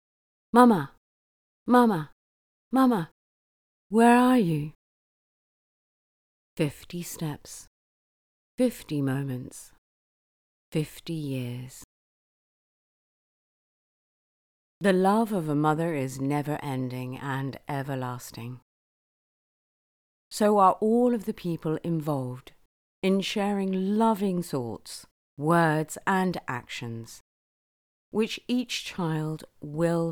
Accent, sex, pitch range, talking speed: British, female, 135-215 Hz, 80 wpm